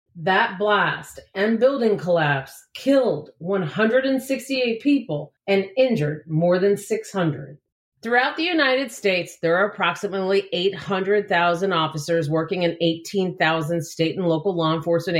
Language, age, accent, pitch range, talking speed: English, 40-59, American, 155-210 Hz, 120 wpm